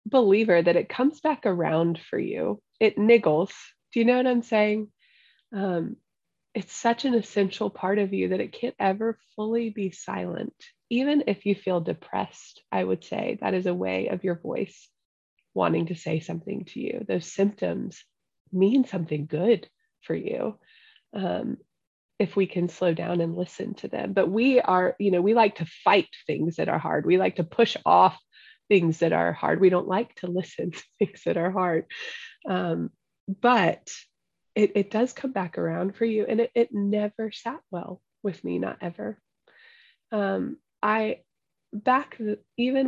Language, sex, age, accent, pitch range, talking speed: English, female, 20-39, American, 185-240 Hz, 175 wpm